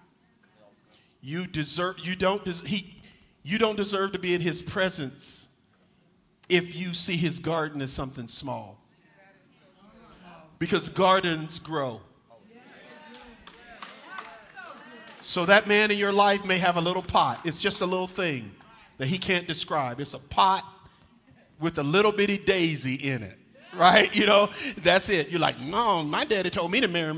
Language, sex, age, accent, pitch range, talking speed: English, male, 50-69, American, 160-210 Hz, 155 wpm